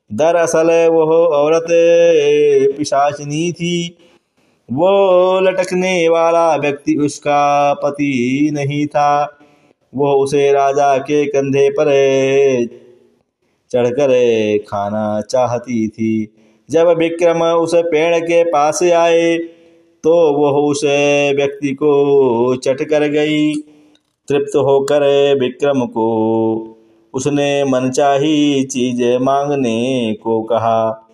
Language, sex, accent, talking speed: Hindi, male, native, 95 wpm